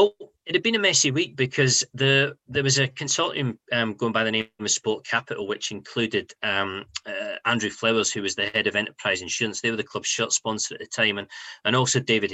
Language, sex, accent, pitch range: English, male, British, 115-155 Hz